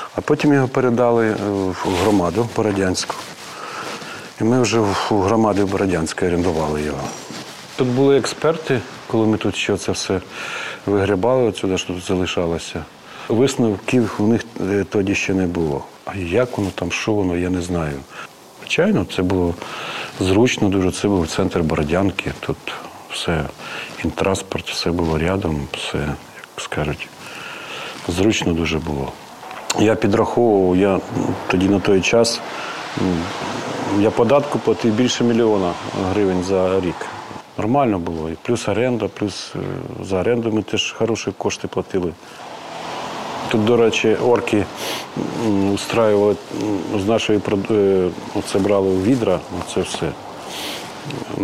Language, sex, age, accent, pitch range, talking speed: Ukrainian, male, 40-59, native, 90-110 Hz, 125 wpm